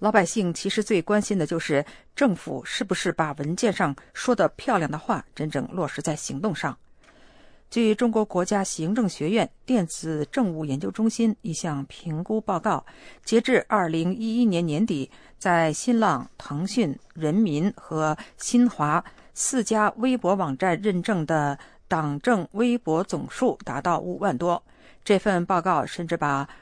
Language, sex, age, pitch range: English, female, 50-69, 160-225 Hz